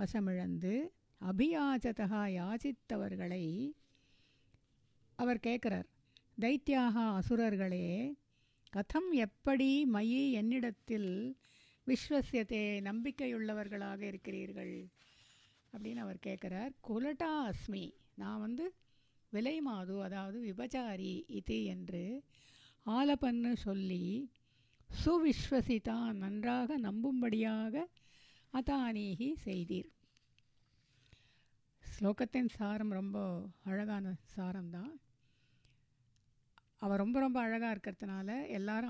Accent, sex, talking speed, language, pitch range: native, female, 70 wpm, Tamil, 185-245 Hz